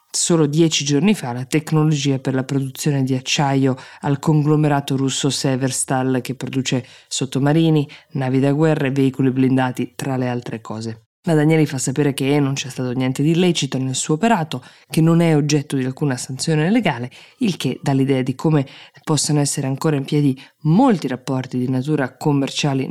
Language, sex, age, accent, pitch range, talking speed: Italian, female, 20-39, native, 130-155 Hz, 175 wpm